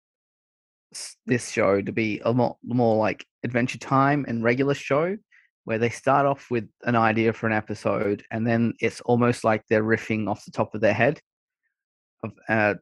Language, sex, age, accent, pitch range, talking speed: English, male, 20-39, Australian, 110-120 Hz, 185 wpm